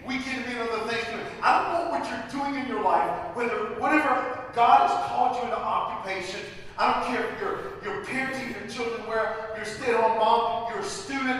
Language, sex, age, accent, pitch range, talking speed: English, male, 40-59, American, 195-255 Hz, 210 wpm